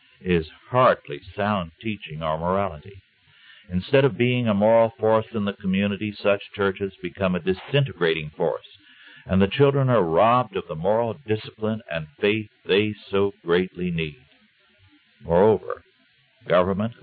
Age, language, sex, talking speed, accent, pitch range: 60-79, English, male, 135 wpm, American, 85-115 Hz